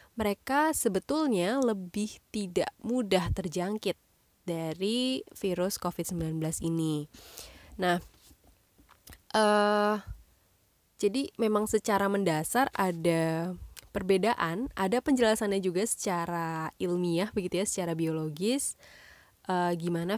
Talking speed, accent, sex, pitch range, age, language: 90 wpm, native, female, 170-220 Hz, 20-39, Indonesian